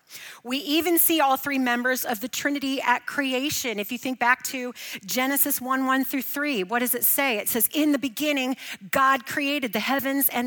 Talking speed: 200 wpm